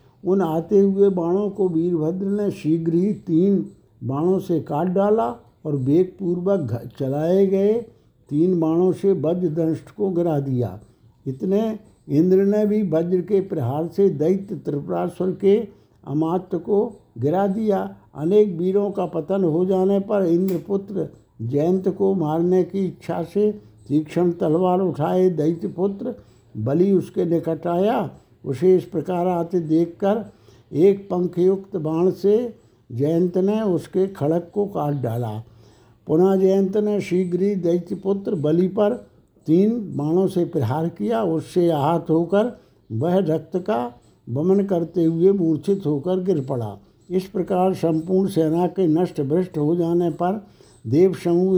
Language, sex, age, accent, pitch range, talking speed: Hindi, male, 60-79, native, 155-195 Hz, 135 wpm